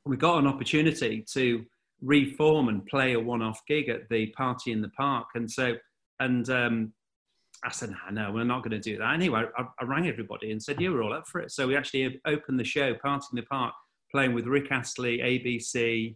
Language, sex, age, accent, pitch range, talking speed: English, male, 40-59, British, 115-135 Hz, 215 wpm